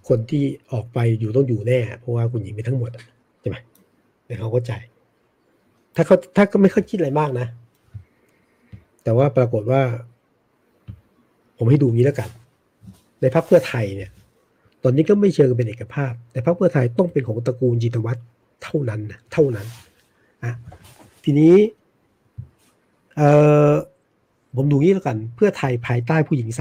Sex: male